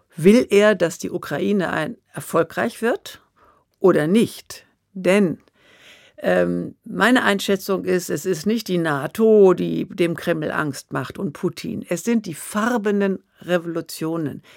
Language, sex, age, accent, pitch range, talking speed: German, female, 60-79, German, 165-215 Hz, 130 wpm